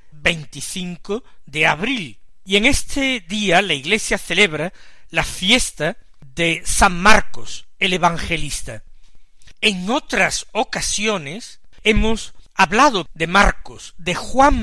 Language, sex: Spanish, male